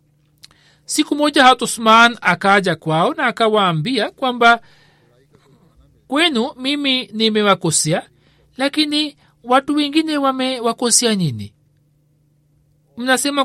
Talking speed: 75 wpm